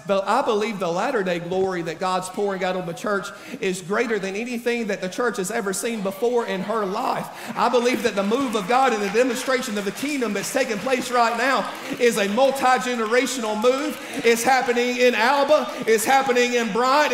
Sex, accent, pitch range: male, American, 230-295 Hz